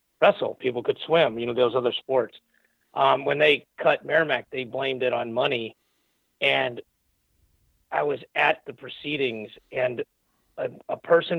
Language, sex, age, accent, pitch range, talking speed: English, male, 40-59, American, 120-150 Hz, 155 wpm